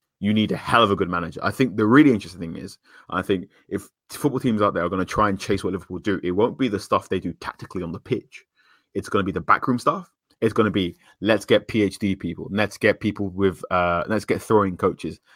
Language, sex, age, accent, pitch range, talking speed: English, male, 20-39, British, 90-105 Hz, 260 wpm